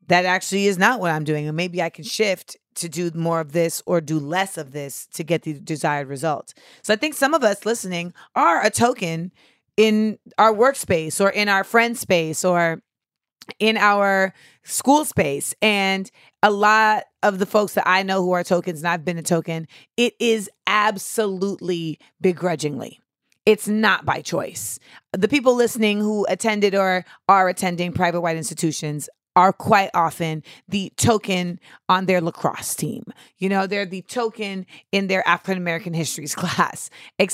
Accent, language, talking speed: American, English, 170 wpm